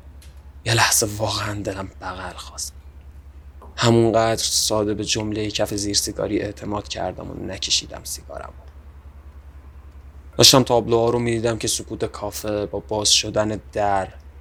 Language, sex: Persian, male